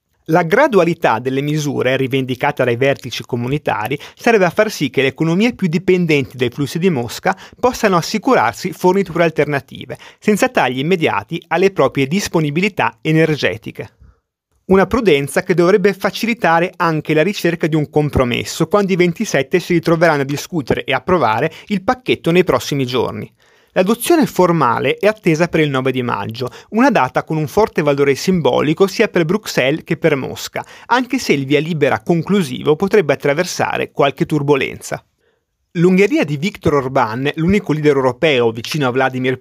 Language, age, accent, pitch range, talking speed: Italian, 30-49, native, 140-195 Hz, 150 wpm